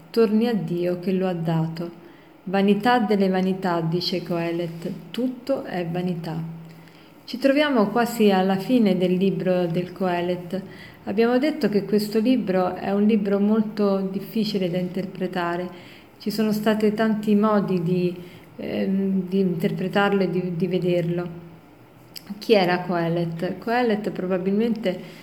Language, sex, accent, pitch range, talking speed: Italian, female, native, 180-210 Hz, 130 wpm